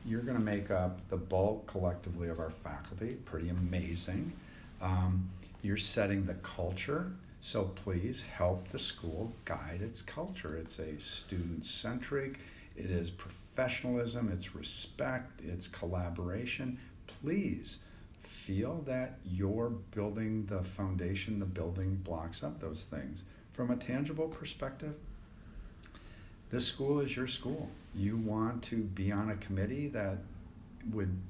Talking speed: 130 wpm